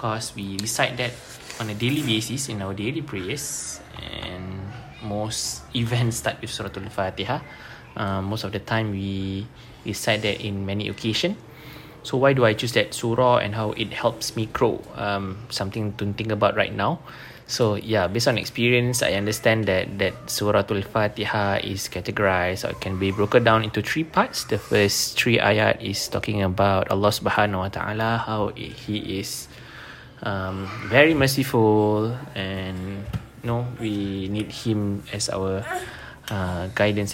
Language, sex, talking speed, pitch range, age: English, male, 160 wpm, 100-120 Hz, 20-39